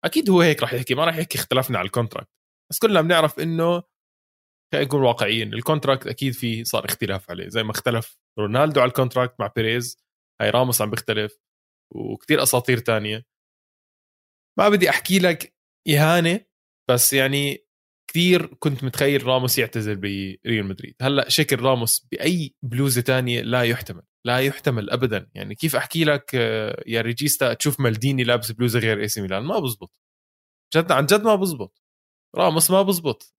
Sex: male